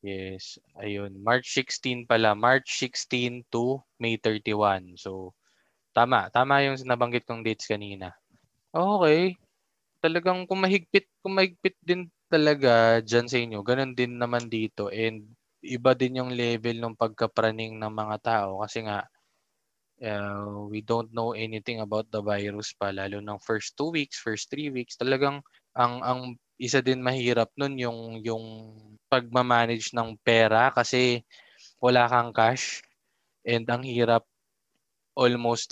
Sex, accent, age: male, native, 20-39